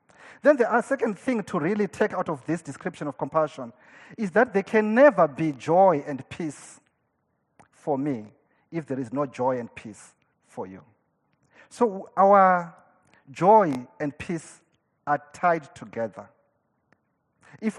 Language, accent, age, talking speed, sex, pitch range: English, South African, 40-59, 140 wpm, male, 135-195 Hz